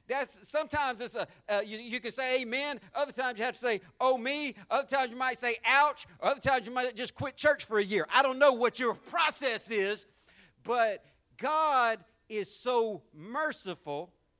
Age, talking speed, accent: 50-69, 190 wpm, American